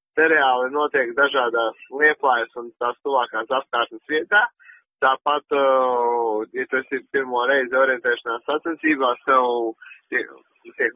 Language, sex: English, male